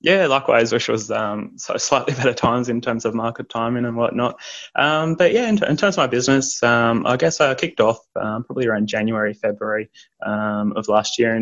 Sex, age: male, 20-39